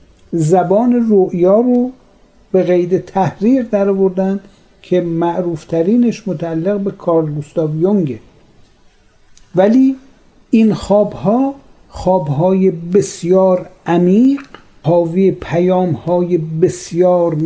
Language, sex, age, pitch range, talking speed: Persian, male, 50-69, 170-205 Hz, 75 wpm